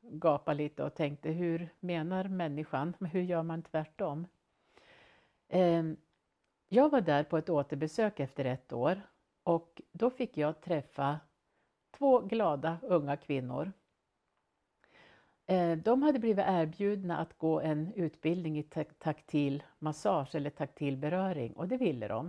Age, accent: 50-69, native